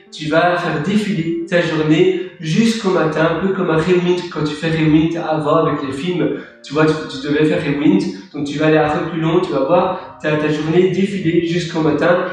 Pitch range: 150-185 Hz